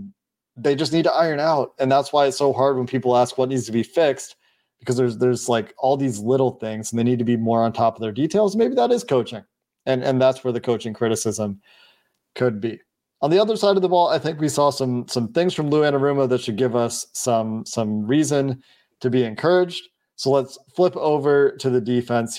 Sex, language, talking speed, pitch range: male, English, 230 wpm, 120-150 Hz